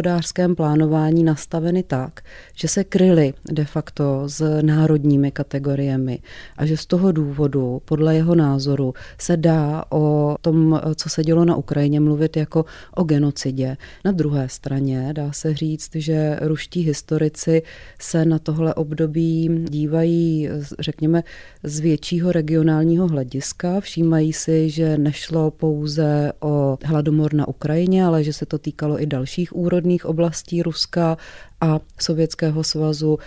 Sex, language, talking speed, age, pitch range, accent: female, Czech, 130 wpm, 30-49, 150-165 Hz, native